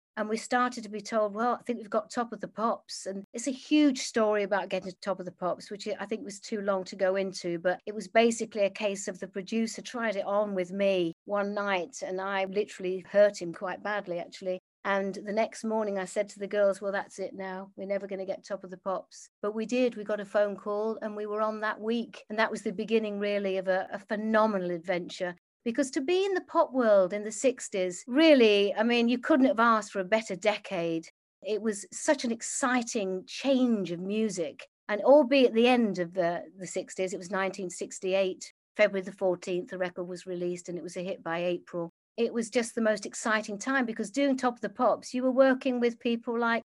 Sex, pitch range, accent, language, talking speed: female, 190-235 Hz, British, English, 230 wpm